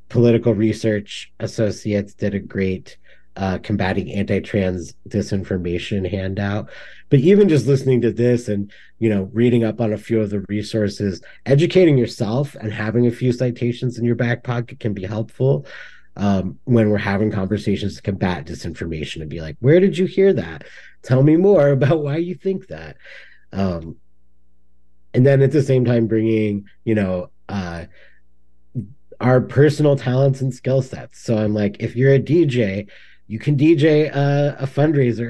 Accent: American